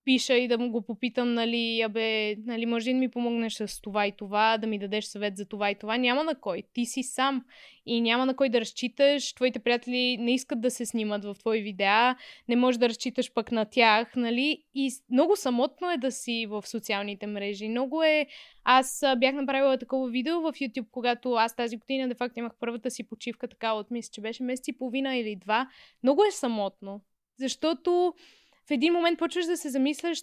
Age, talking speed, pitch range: 20-39, 205 wpm, 230-285 Hz